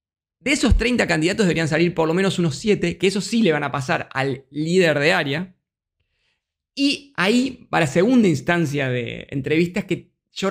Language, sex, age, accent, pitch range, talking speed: Spanish, male, 20-39, Argentinian, 140-190 Hz, 175 wpm